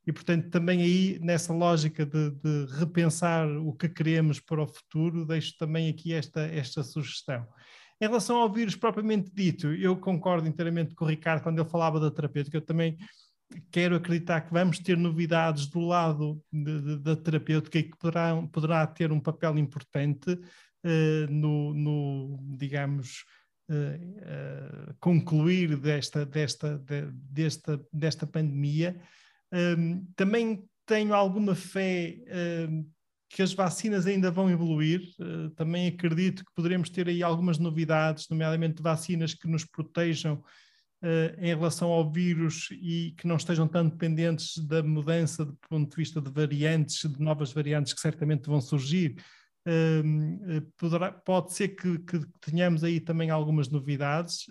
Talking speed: 140 wpm